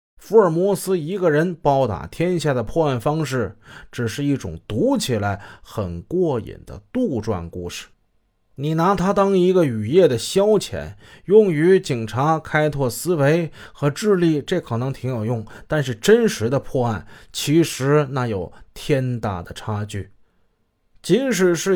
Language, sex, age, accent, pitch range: Chinese, male, 20-39, native, 115-170 Hz